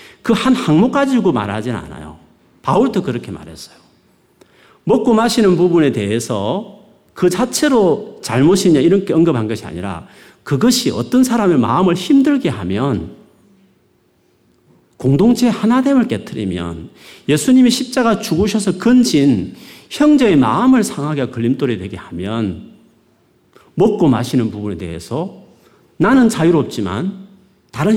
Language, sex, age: Korean, male, 40-59